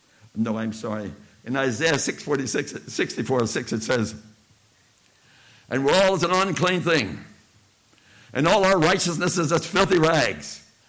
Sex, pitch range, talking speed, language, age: male, 105-150 Hz, 145 wpm, English, 60-79